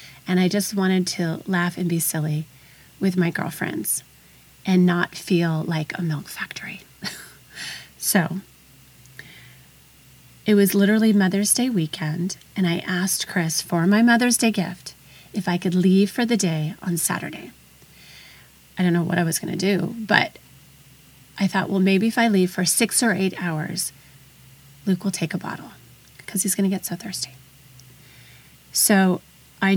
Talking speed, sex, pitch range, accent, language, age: 160 wpm, female, 165-195 Hz, American, English, 30-49